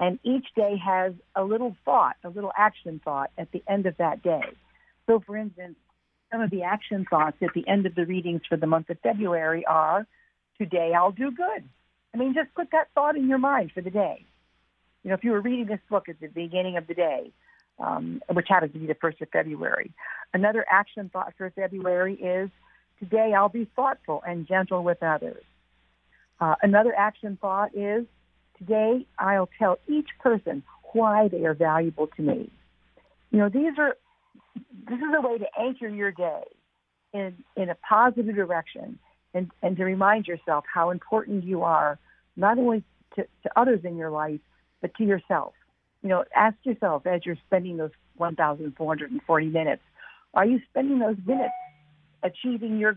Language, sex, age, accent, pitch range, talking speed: English, female, 50-69, American, 165-220 Hz, 180 wpm